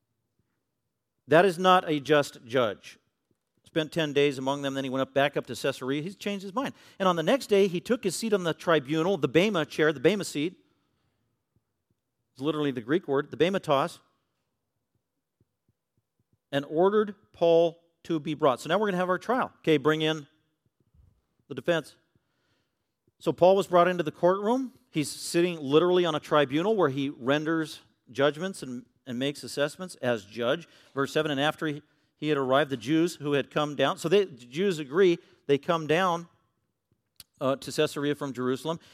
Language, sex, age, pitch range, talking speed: English, male, 40-59, 140-185 Hz, 180 wpm